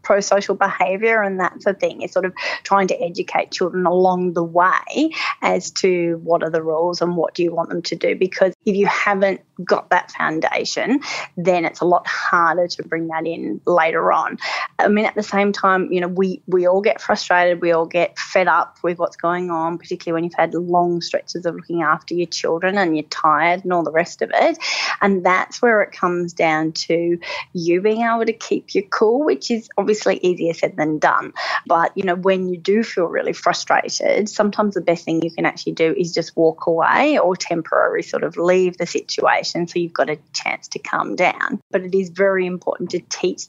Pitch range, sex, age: 170-200 Hz, female, 20-39